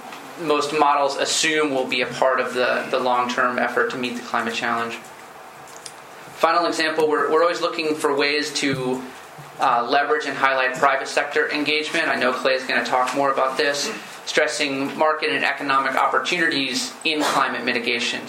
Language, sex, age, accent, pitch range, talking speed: English, male, 30-49, American, 125-145 Hz, 165 wpm